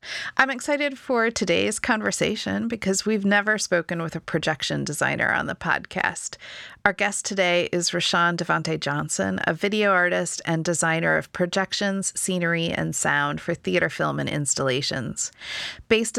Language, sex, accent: English, female, American